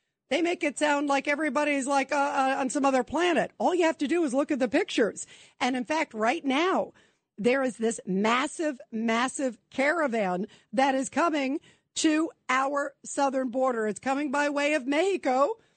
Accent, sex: American, female